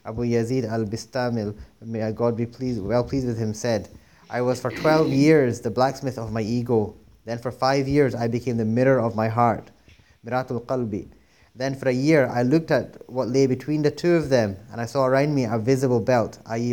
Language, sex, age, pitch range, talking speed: English, male, 30-49, 110-130 Hz, 210 wpm